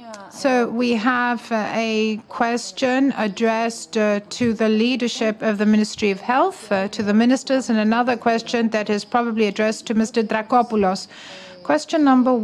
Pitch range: 215-250 Hz